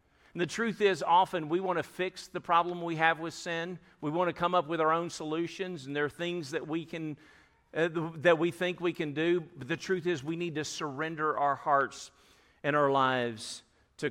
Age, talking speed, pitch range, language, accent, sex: 50-69, 220 wpm, 135-165 Hz, English, American, male